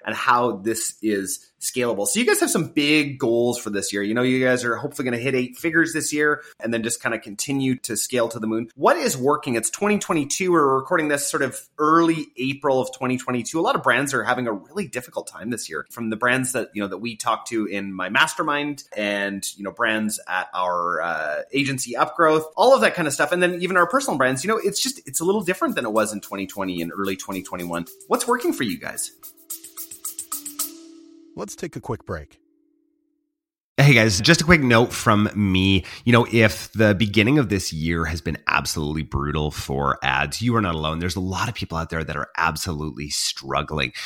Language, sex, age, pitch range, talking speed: English, male, 30-49, 85-145 Hz, 220 wpm